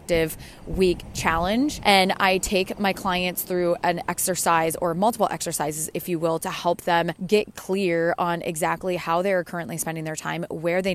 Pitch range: 165-185 Hz